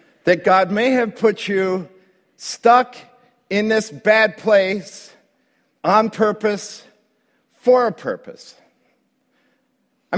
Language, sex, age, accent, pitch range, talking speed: English, male, 50-69, American, 165-230 Hz, 100 wpm